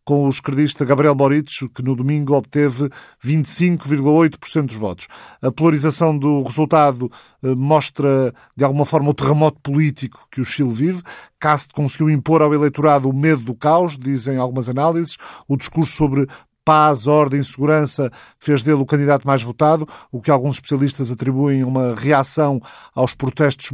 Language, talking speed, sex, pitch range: Portuguese, 155 wpm, male, 130-150 Hz